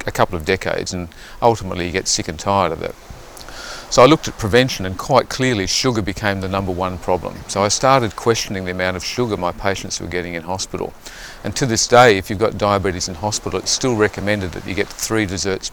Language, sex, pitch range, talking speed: English, male, 95-115 Hz, 225 wpm